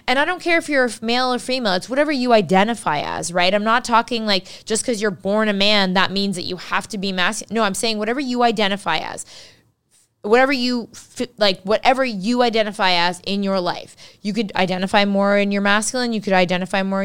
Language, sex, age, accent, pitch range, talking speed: English, female, 20-39, American, 190-235 Hz, 215 wpm